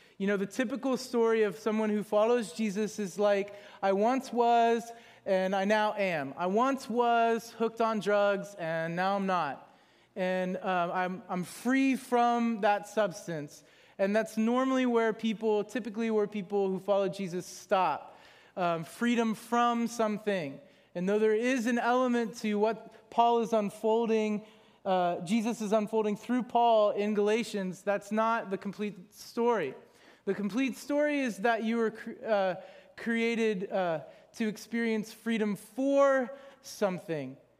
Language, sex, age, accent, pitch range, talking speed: English, male, 30-49, American, 200-235 Hz, 145 wpm